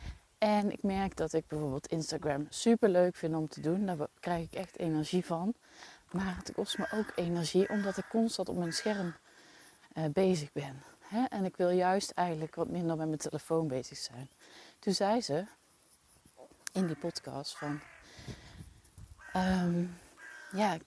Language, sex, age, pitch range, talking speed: Dutch, female, 30-49, 160-205 Hz, 160 wpm